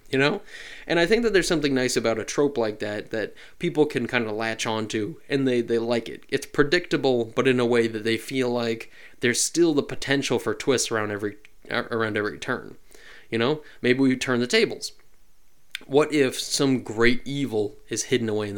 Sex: male